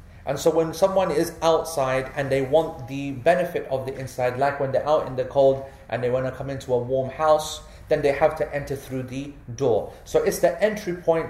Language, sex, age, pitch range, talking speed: English, male, 30-49, 130-160 Hz, 230 wpm